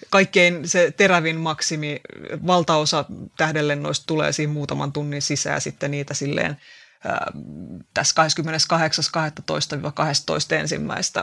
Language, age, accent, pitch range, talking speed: Finnish, 30-49, native, 150-180 Hz, 85 wpm